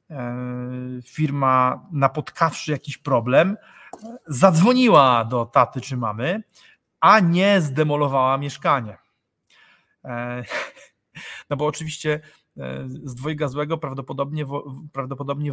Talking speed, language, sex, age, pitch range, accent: 80 wpm, Polish, male, 30-49, 120-145 Hz, native